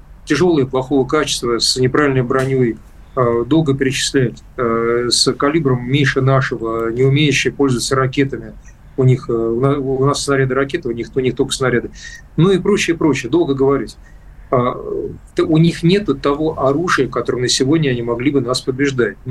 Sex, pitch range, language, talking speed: male, 125-145 Hz, Russian, 160 wpm